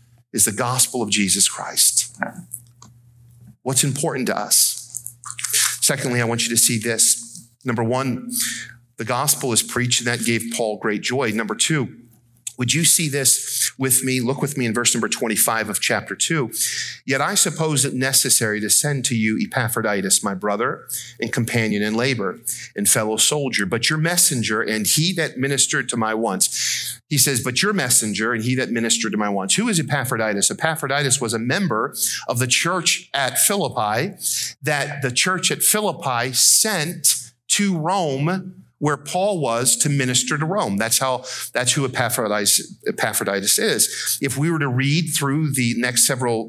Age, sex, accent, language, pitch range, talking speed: 40-59, male, American, English, 115-145 Hz, 170 wpm